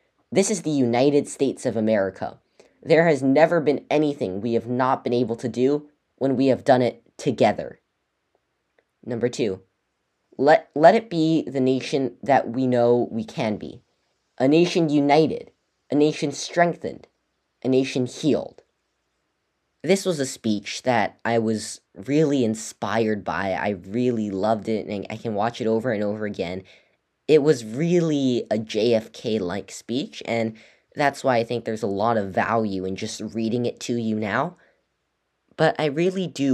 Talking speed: 160 wpm